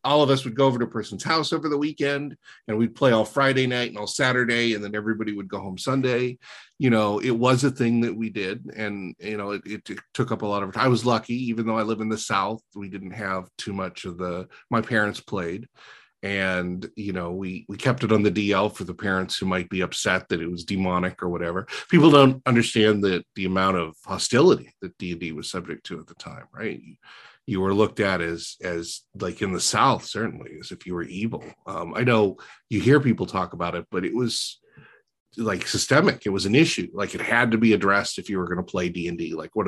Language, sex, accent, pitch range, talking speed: English, male, American, 95-125 Hz, 235 wpm